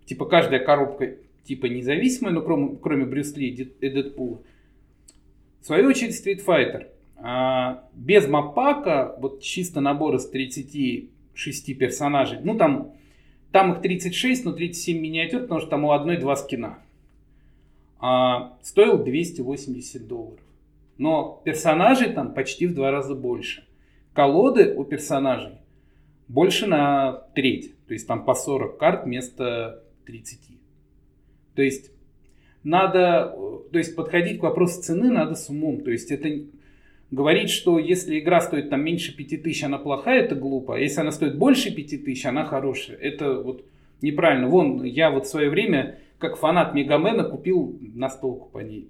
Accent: native